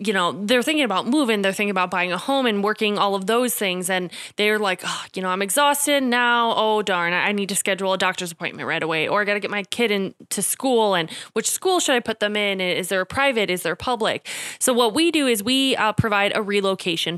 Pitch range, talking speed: 190-240 Hz, 250 wpm